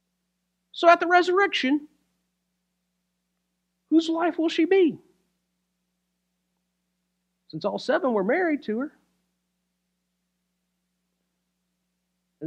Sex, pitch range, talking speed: male, 180-230 Hz, 80 wpm